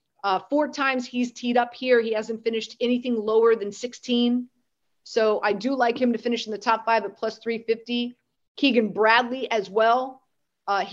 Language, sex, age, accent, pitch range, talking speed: English, female, 30-49, American, 210-245 Hz, 180 wpm